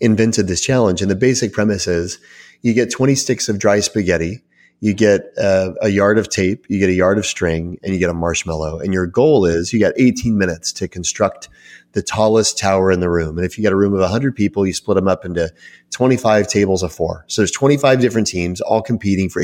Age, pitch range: 30-49, 95-150 Hz